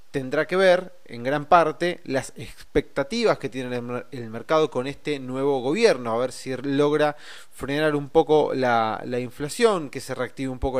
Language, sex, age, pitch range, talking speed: Spanish, male, 20-39, 130-175 Hz, 170 wpm